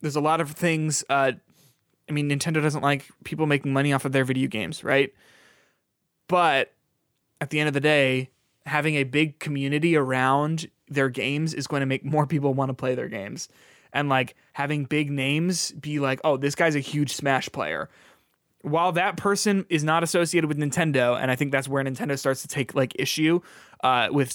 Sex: male